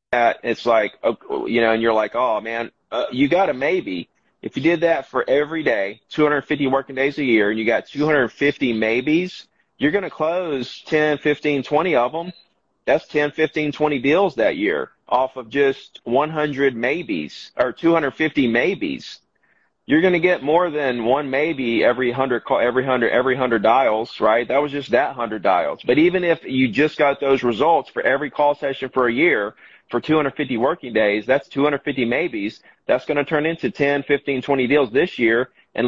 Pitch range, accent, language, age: 120-150 Hz, American, English, 30-49